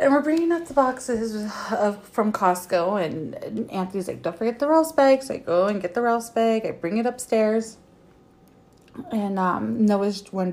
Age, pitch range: 30-49, 180-235 Hz